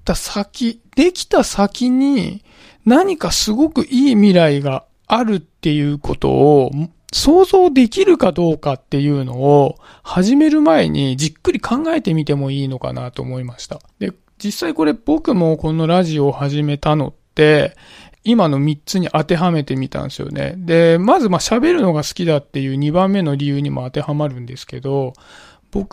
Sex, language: male, Japanese